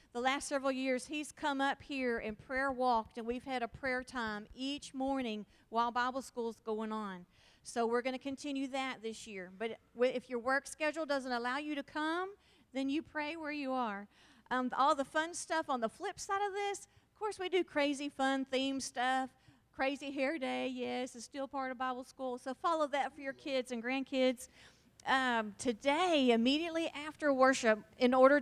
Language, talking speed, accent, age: English, 195 wpm, American, 40-59